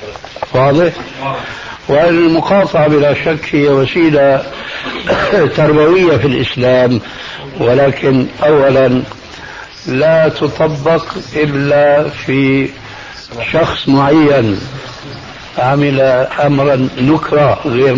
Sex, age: male, 60-79